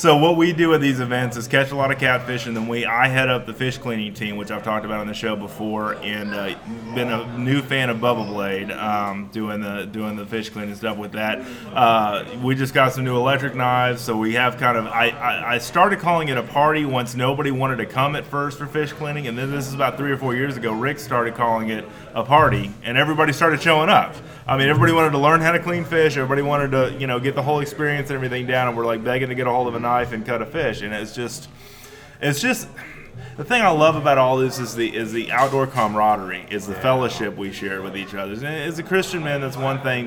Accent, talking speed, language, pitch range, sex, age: American, 255 wpm, English, 110-145 Hz, male, 20-39